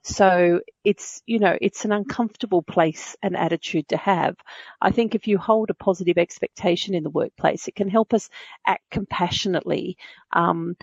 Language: English